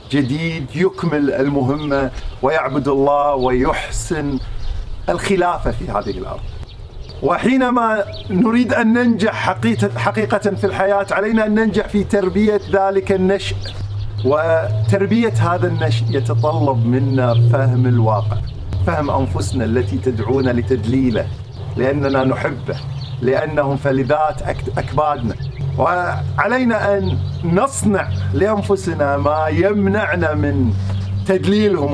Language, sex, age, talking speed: Arabic, male, 50-69, 90 wpm